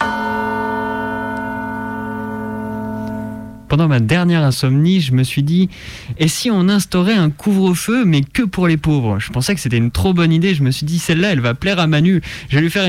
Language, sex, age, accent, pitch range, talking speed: French, male, 30-49, French, 130-175 Hz, 205 wpm